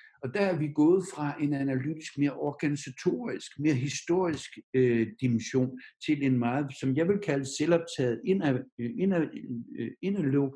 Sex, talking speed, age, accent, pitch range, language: male, 130 wpm, 60-79, native, 125-160 Hz, Danish